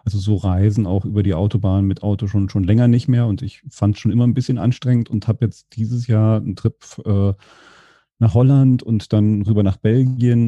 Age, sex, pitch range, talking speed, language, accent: 40-59, male, 105-120 Hz, 220 wpm, German, German